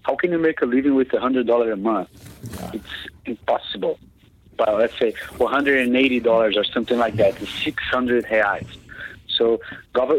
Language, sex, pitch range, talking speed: English, male, 115-140 Hz, 140 wpm